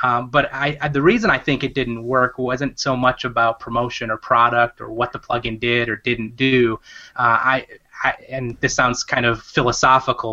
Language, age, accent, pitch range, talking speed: English, 20-39, American, 115-135 Hz, 205 wpm